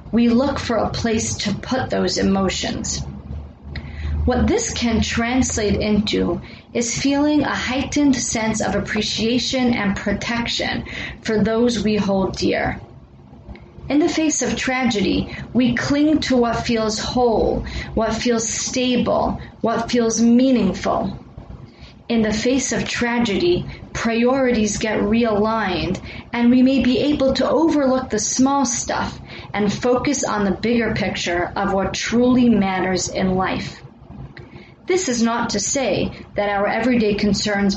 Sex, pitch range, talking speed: female, 205-255 Hz, 135 wpm